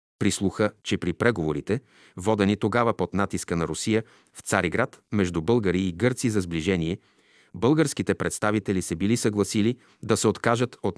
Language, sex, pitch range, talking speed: Bulgarian, male, 95-120 Hz, 150 wpm